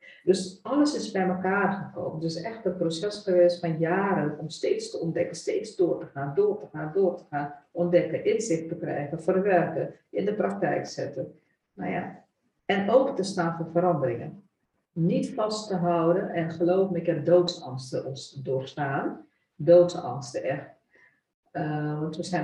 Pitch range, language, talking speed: 155-185 Hz, Dutch, 170 wpm